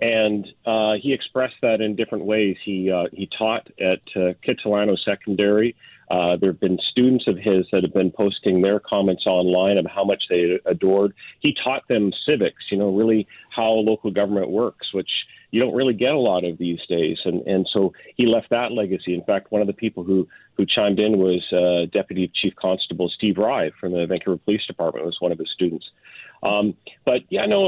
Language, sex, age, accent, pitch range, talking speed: English, male, 40-59, American, 95-115 Hz, 205 wpm